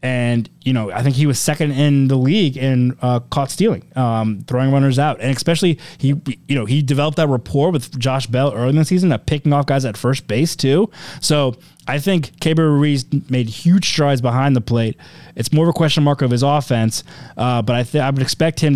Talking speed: 230 wpm